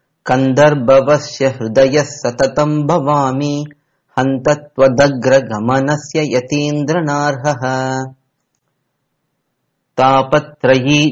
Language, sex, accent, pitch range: Tamil, male, native, 130-150 Hz